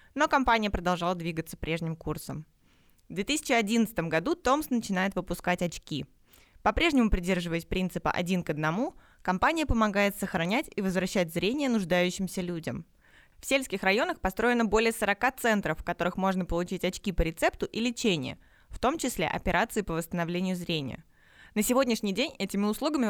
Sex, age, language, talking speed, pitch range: female, 20-39, Russian, 145 wpm, 175-225 Hz